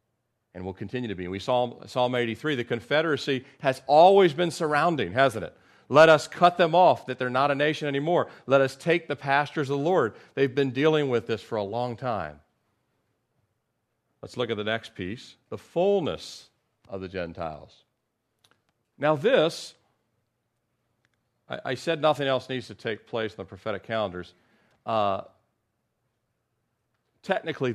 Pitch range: 120-155 Hz